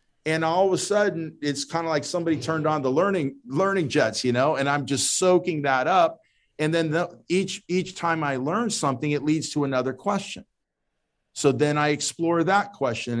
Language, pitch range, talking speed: English, 135-160 Hz, 200 wpm